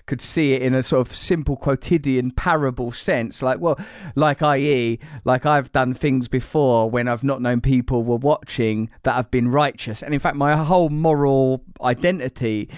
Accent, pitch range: British, 115-135 Hz